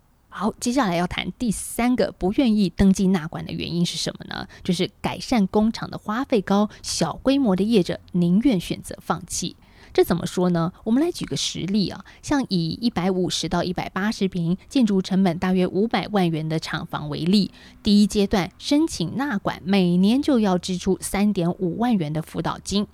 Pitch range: 175-220 Hz